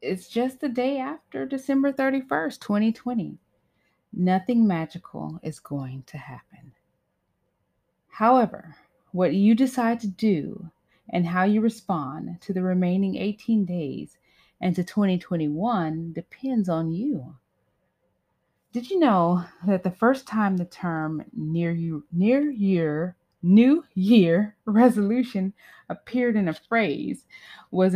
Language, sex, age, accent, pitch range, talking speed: English, female, 30-49, American, 155-215 Hz, 120 wpm